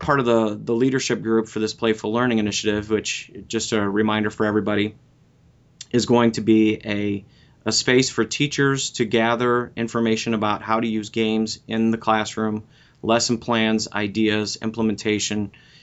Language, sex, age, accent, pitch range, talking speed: English, male, 30-49, American, 105-120 Hz, 155 wpm